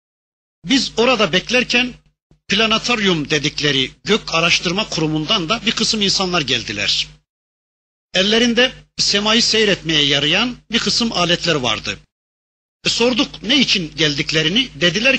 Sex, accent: male, native